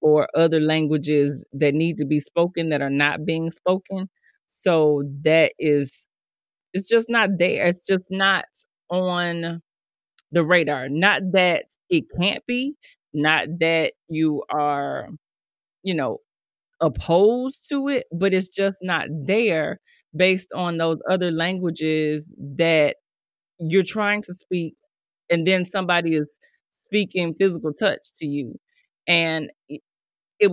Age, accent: 30-49, American